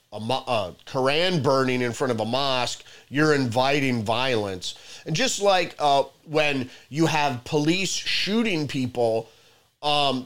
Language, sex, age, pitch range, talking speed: English, male, 30-49, 120-150 Hz, 130 wpm